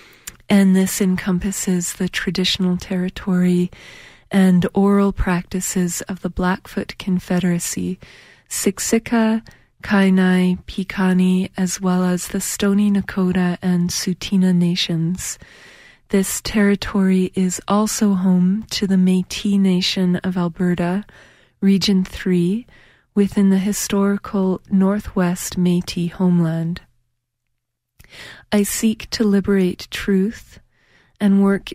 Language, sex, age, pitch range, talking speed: English, female, 30-49, 180-200 Hz, 95 wpm